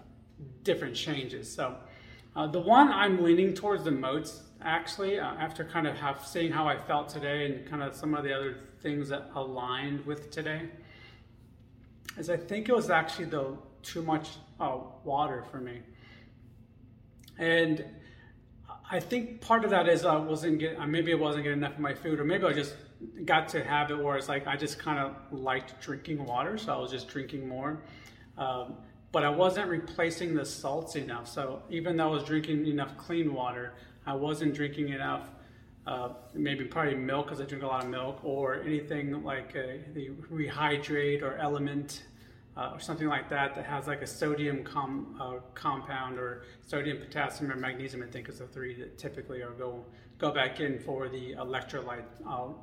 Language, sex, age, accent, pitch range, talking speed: English, male, 30-49, American, 125-155 Hz, 185 wpm